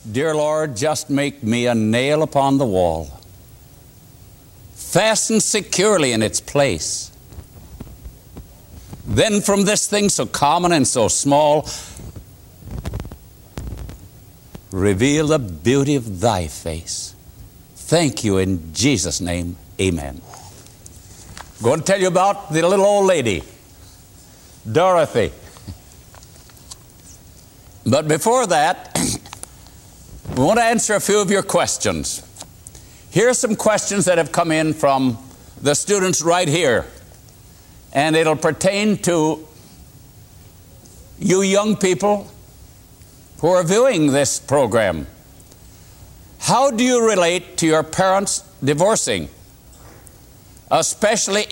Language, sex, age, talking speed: English, male, 60-79, 110 wpm